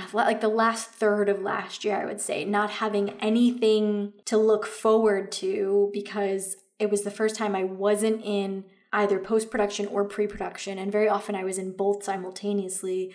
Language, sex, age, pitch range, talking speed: English, female, 20-39, 200-220 Hz, 175 wpm